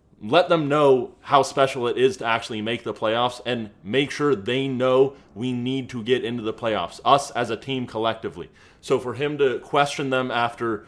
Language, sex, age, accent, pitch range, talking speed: English, male, 30-49, American, 105-130 Hz, 200 wpm